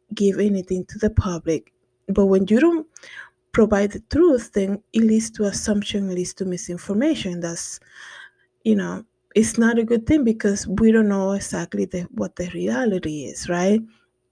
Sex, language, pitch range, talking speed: female, English, 185-225 Hz, 160 wpm